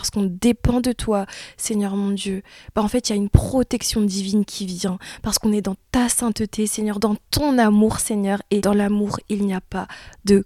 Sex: female